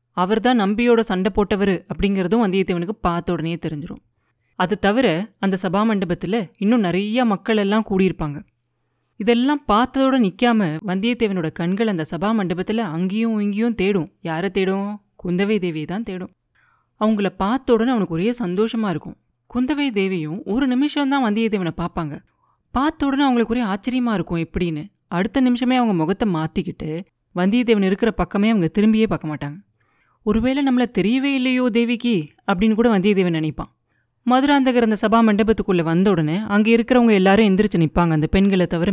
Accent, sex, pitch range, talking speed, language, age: native, female, 175-230 Hz, 135 wpm, Tamil, 30-49